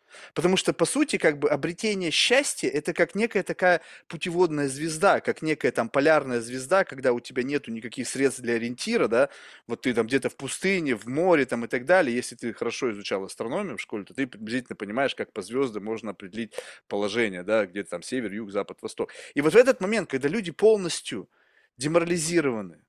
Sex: male